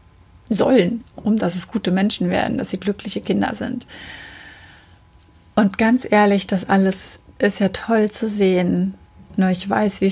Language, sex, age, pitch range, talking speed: German, female, 30-49, 185-215 Hz, 155 wpm